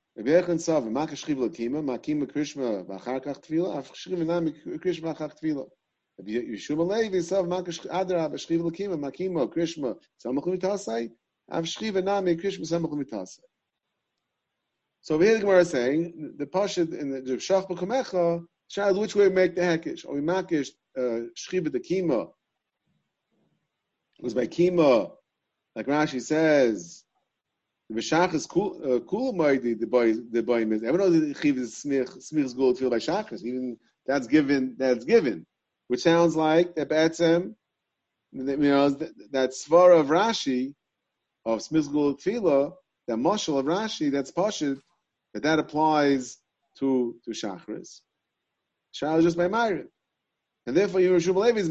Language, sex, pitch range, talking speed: English, male, 130-175 Hz, 90 wpm